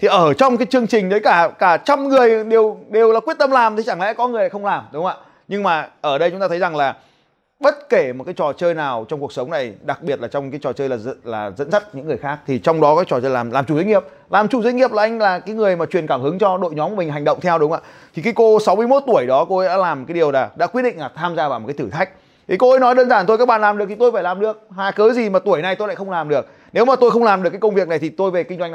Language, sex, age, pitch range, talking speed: Vietnamese, male, 20-39, 145-220 Hz, 340 wpm